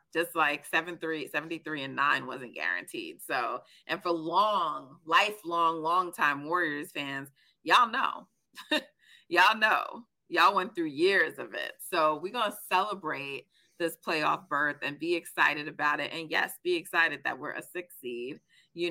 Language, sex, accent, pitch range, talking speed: English, female, American, 155-235 Hz, 155 wpm